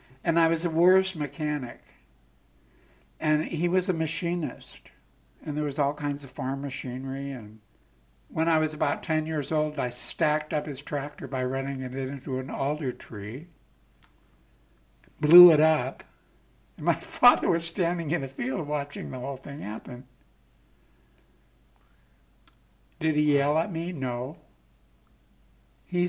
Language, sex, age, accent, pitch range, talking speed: English, male, 60-79, American, 125-165 Hz, 145 wpm